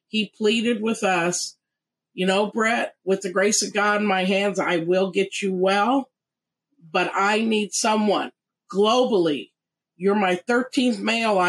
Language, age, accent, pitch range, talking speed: English, 50-69, American, 190-220 Hz, 150 wpm